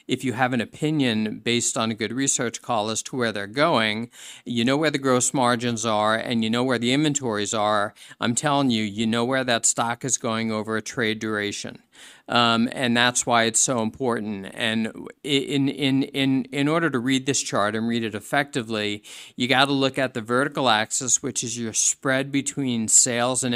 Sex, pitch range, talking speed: male, 110-130 Hz, 205 wpm